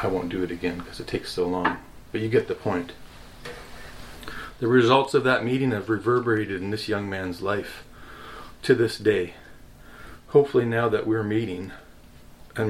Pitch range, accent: 100-125 Hz, American